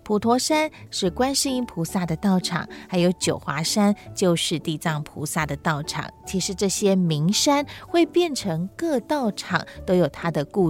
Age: 30-49